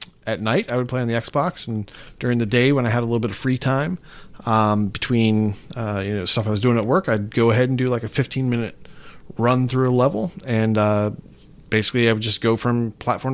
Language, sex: English, male